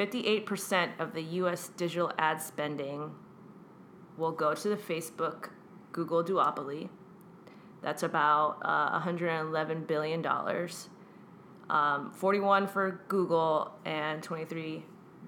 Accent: American